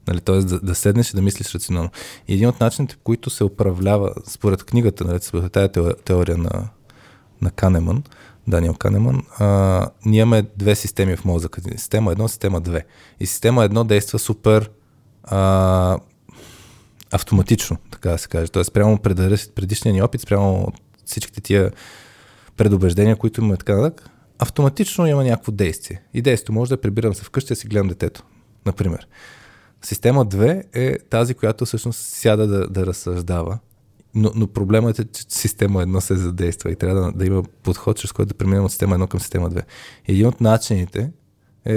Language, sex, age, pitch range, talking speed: Bulgarian, male, 20-39, 95-110 Hz, 170 wpm